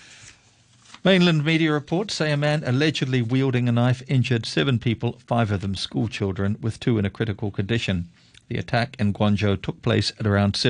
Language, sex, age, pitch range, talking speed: English, male, 50-69, 100-120 Hz, 175 wpm